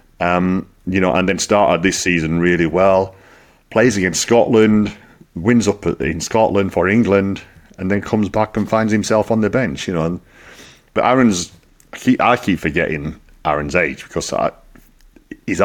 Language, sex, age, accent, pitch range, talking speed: English, male, 40-59, British, 85-105 Hz, 155 wpm